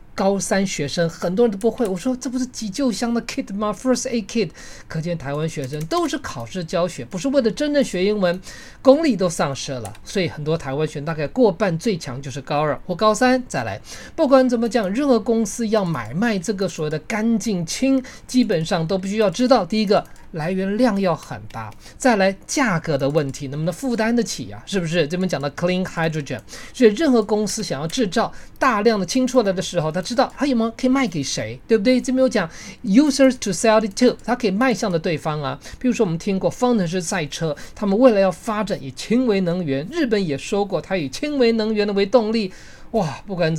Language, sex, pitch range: English, male, 165-240 Hz